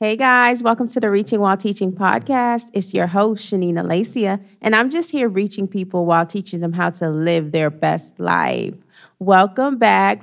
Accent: American